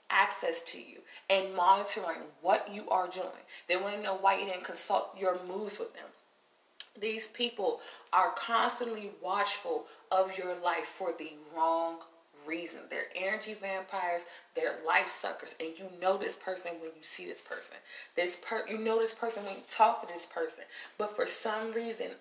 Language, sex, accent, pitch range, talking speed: English, female, American, 185-225 Hz, 175 wpm